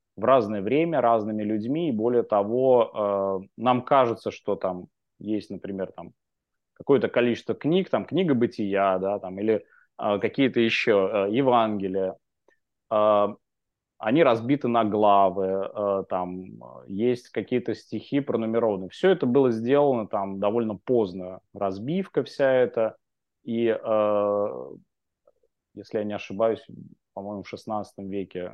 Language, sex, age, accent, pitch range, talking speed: Russian, male, 20-39, native, 100-125 Hz, 125 wpm